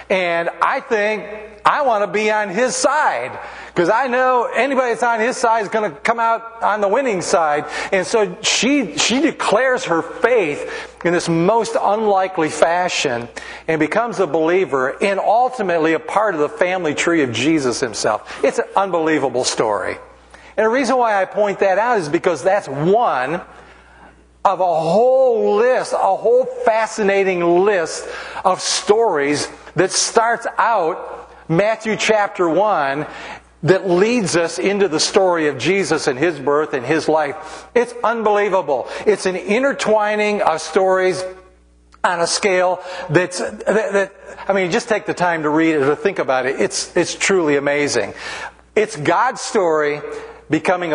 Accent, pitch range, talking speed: American, 155-215 Hz, 155 wpm